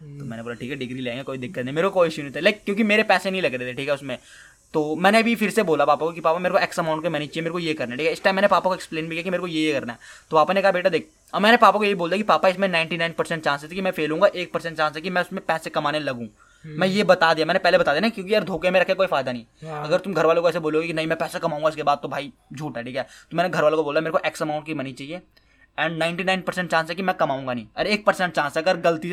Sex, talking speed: male, 330 wpm